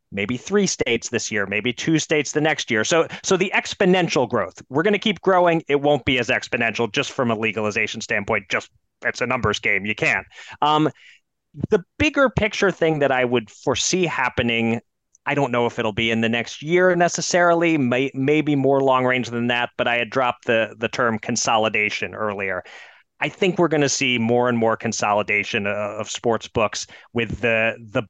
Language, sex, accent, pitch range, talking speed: English, male, American, 110-145 Hz, 190 wpm